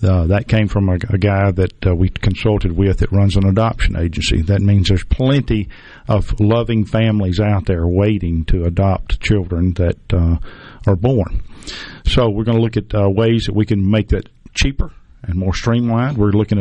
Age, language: 50-69, English